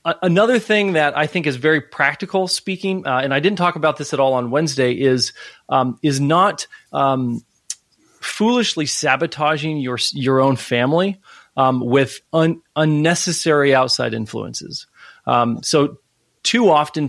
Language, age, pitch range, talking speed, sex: English, 30-49, 125-155 Hz, 145 wpm, male